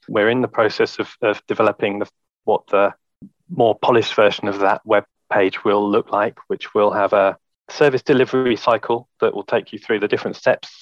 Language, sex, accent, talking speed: English, male, British, 190 wpm